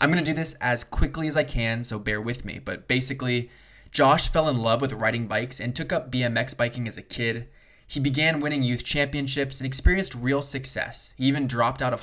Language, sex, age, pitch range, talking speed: English, male, 20-39, 115-140 Hz, 225 wpm